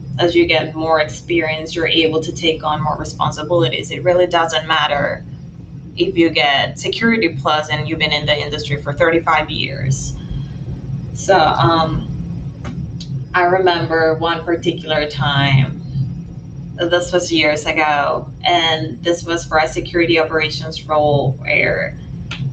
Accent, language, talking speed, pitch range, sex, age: American, English, 135 wpm, 145-170 Hz, female, 20-39